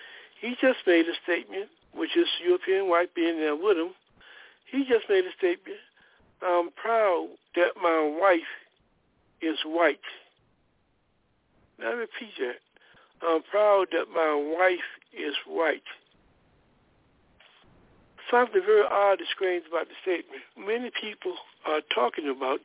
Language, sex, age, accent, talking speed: English, male, 60-79, American, 125 wpm